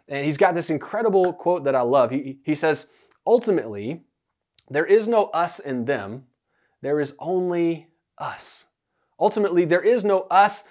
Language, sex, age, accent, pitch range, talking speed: English, male, 30-49, American, 150-195 Hz, 155 wpm